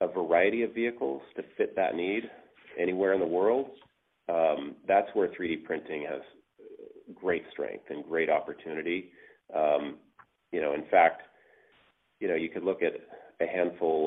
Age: 30-49